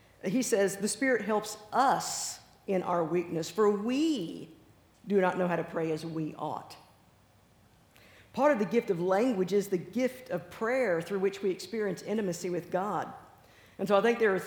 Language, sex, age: English, female, 50-69